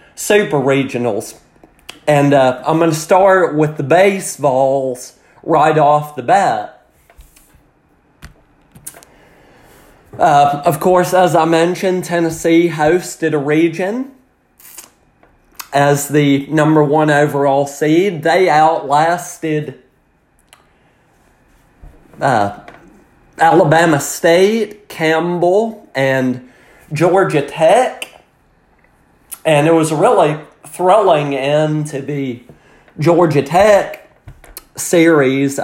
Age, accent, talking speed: 30-49, American, 85 wpm